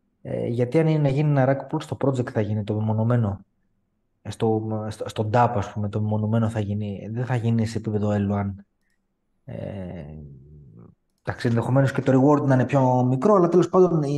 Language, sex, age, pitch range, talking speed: Greek, male, 20-39, 110-135 Hz, 170 wpm